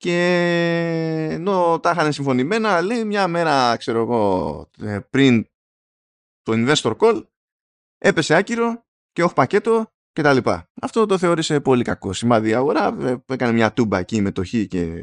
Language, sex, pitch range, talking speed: Greek, male, 115-170 Hz, 150 wpm